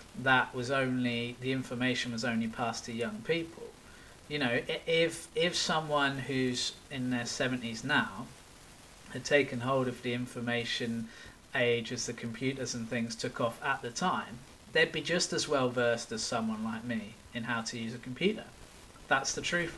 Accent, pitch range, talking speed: British, 120-150 Hz, 175 wpm